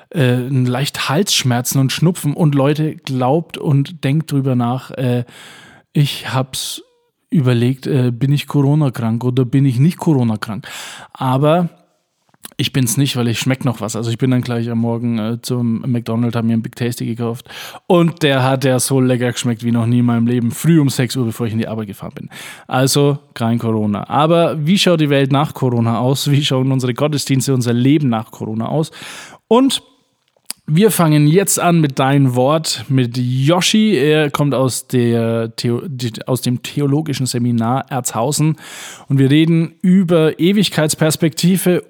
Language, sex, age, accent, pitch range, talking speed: German, male, 20-39, German, 125-160 Hz, 170 wpm